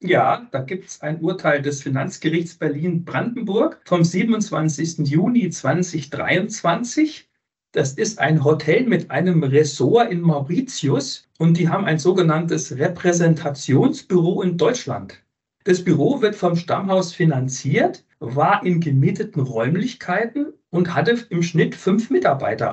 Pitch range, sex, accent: 150-205 Hz, male, German